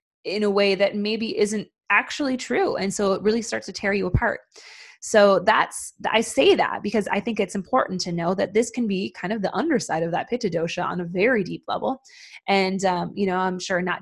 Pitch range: 180-215 Hz